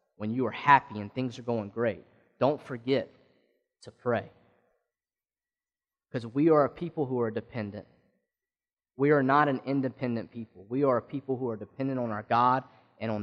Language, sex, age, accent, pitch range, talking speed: English, male, 20-39, American, 125-185 Hz, 175 wpm